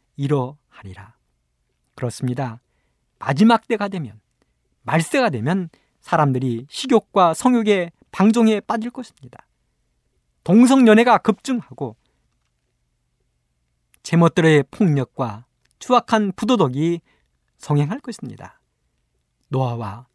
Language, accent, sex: Korean, native, male